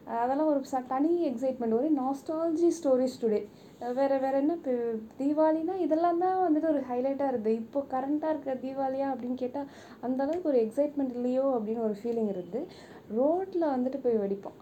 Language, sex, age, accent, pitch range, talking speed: Tamil, female, 20-39, native, 220-280 Hz, 155 wpm